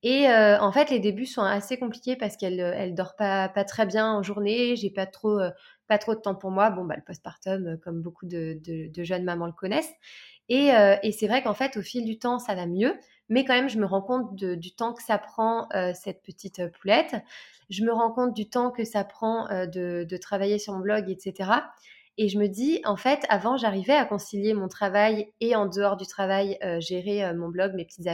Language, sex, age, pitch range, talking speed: French, female, 20-39, 190-230 Hz, 240 wpm